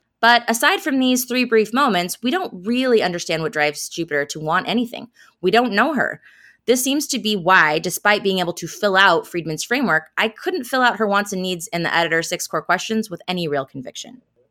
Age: 20-39